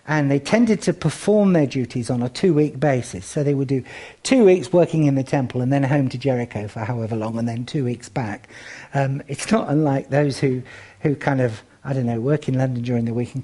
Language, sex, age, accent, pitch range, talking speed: English, male, 50-69, British, 120-155 Hz, 235 wpm